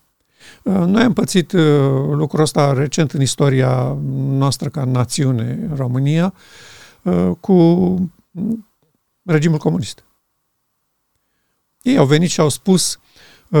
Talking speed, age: 95 wpm, 50-69